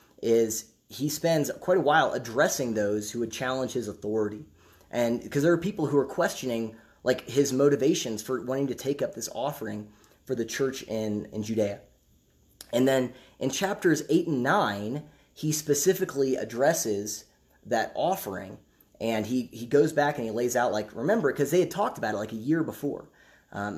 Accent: American